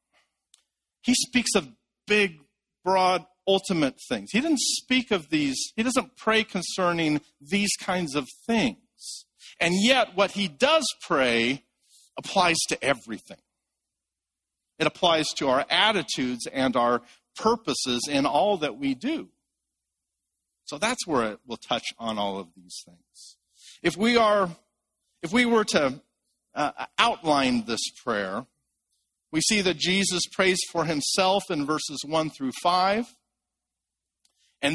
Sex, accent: male, American